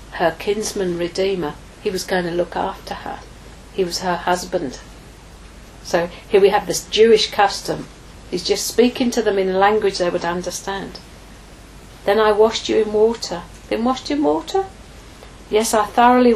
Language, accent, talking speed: English, British, 165 wpm